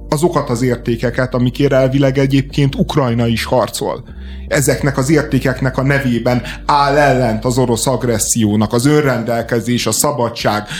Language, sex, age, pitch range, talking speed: Hungarian, male, 30-49, 110-135 Hz, 130 wpm